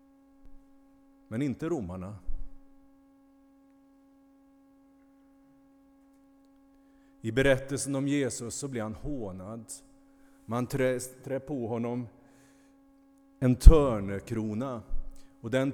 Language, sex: Swedish, male